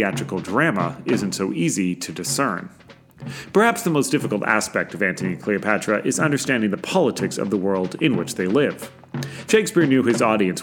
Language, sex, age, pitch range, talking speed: English, male, 30-49, 100-145 Hz, 175 wpm